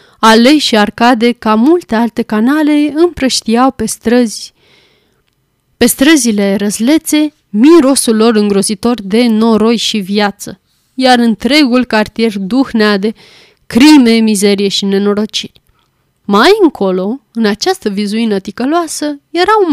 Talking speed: 115 wpm